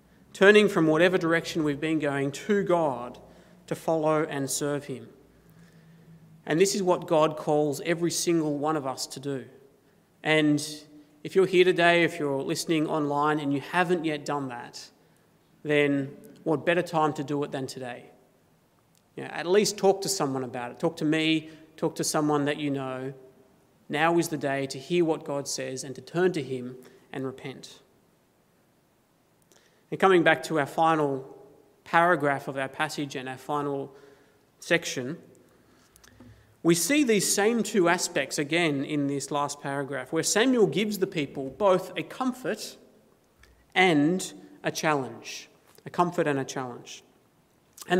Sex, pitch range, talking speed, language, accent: male, 140-175 Hz, 155 wpm, English, Australian